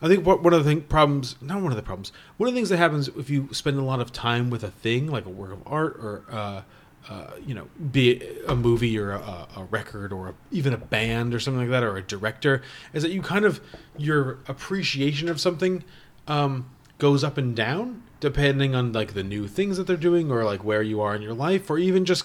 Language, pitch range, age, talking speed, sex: English, 110-150 Hz, 30-49, 240 wpm, male